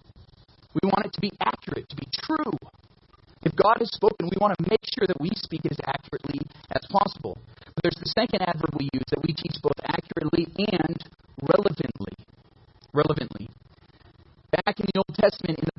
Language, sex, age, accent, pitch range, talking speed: English, male, 30-49, American, 145-185 Hz, 180 wpm